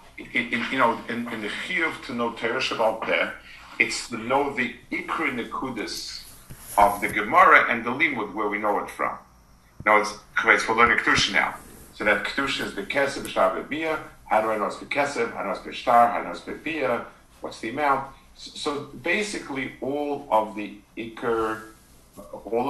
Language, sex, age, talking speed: English, male, 50-69, 185 wpm